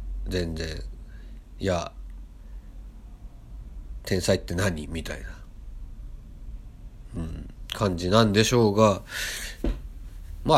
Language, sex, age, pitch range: Japanese, male, 50-69, 75-110 Hz